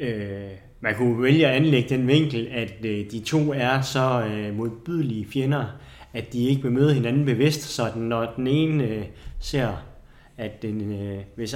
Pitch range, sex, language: 105-135 Hz, male, Danish